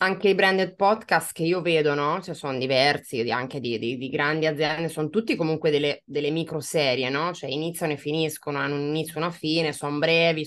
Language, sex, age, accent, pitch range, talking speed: Italian, female, 20-39, native, 140-160 Hz, 210 wpm